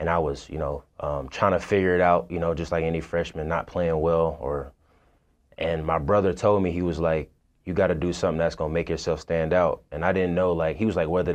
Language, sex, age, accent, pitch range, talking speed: English, male, 20-39, American, 80-90 Hz, 265 wpm